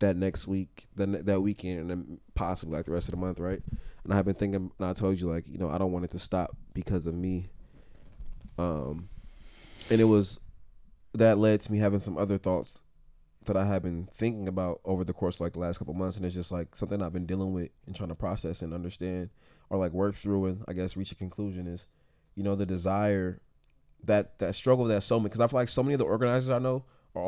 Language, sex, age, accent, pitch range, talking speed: English, male, 20-39, American, 90-105 Hz, 240 wpm